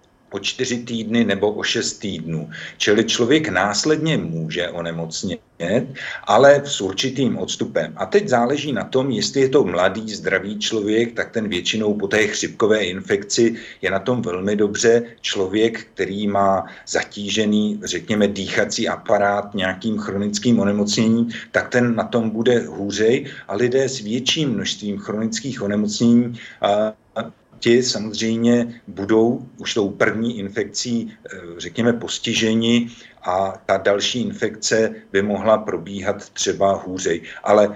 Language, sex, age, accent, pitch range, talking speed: Czech, male, 50-69, native, 100-115 Hz, 130 wpm